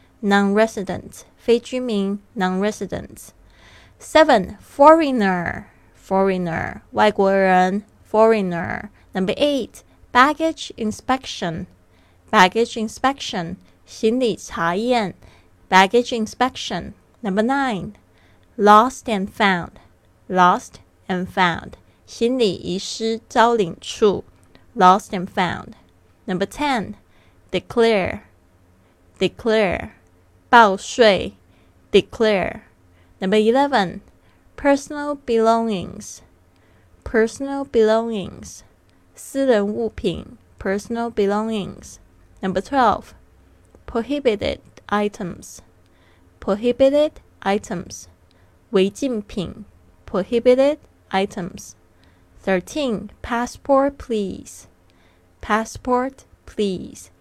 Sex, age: female, 20-39